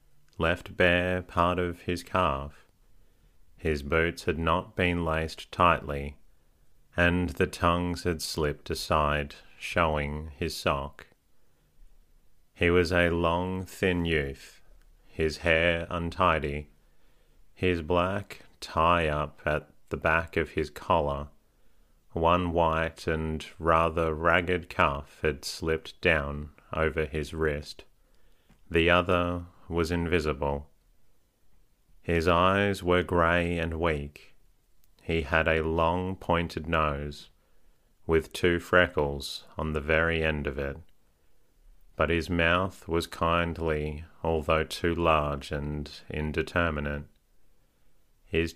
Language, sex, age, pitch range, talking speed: English, male, 30-49, 75-85 Hz, 110 wpm